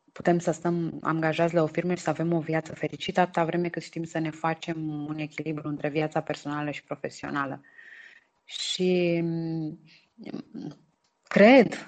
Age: 20-39